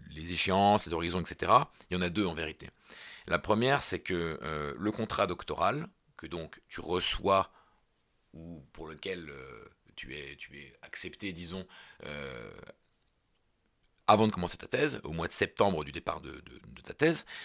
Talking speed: 175 wpm